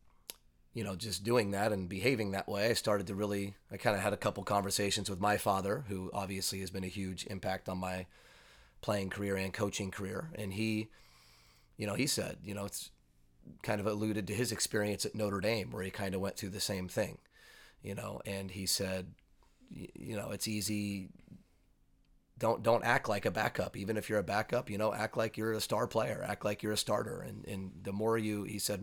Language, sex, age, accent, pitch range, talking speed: English, male, 30-49, American, 95-110 Hz, 215 wpm